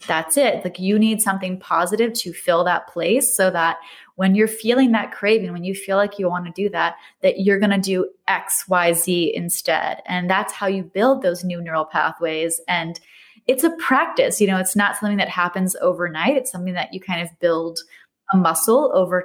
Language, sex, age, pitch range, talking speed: English, female, 20-39, 180-215 Hz, 210 wpm